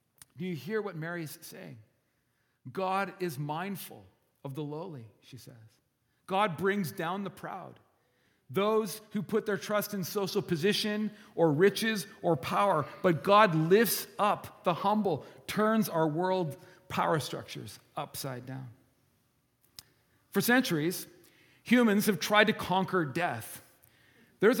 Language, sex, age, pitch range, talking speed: English, male, 40-59, 175-230 Hz, 130 wpm